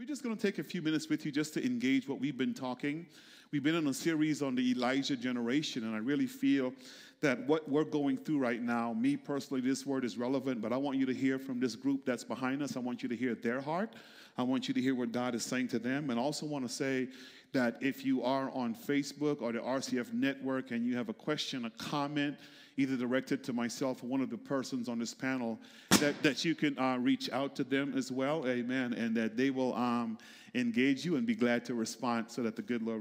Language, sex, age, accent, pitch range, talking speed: English, male, 40-59, American, 125-150 Hz, 245 wpm